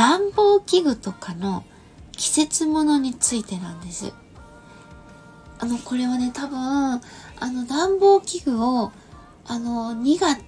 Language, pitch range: Japanese, 205-295 Hz